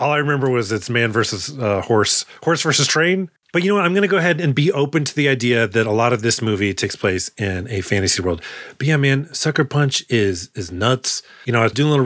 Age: 30-49